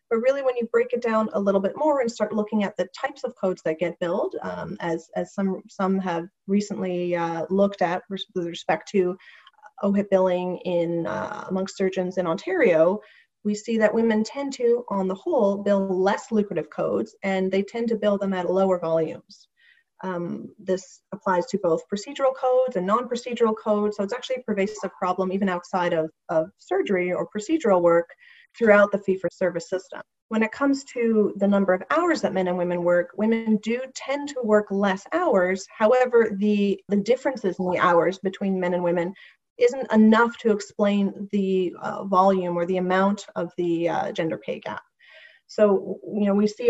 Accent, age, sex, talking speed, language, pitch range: American, 30-49, female, 190 wpm, English, 185-220 Hz